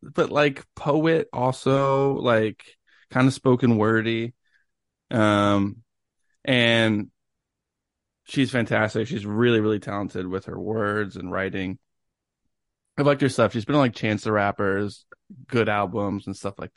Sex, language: male, English